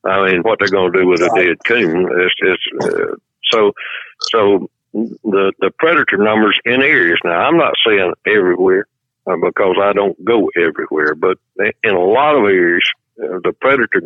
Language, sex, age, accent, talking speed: English, male, 60-79, American, 170 wpm